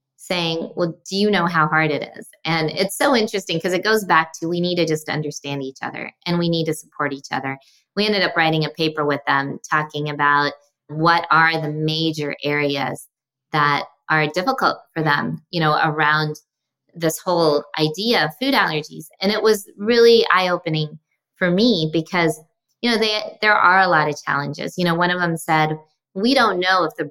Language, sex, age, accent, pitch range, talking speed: English, female, 20-39, American, 150-185 Hz, 195 wpm